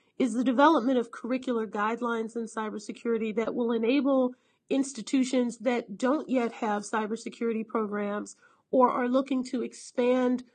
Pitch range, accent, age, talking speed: 225-260 Hz, American, 40-59, 130 wpm